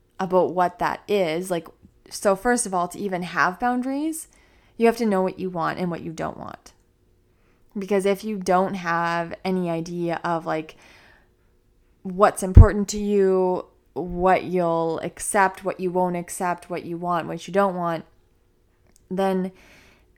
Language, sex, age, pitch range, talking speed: English, female, 20-39, 170-195 Hz, 160 wpm